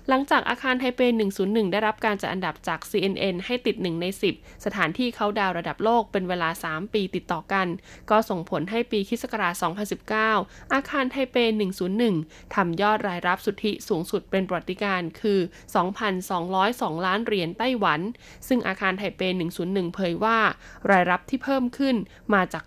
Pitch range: 185-230 Hz